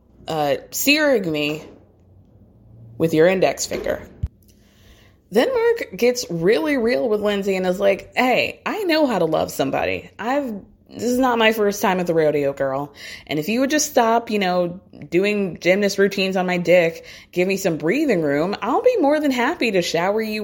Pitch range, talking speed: 160-225 Hz, 180 wpm